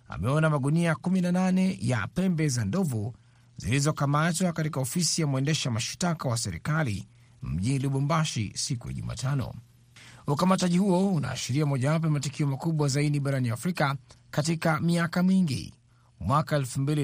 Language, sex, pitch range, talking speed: Swahili, male, 120-155 Hz, 120 wpm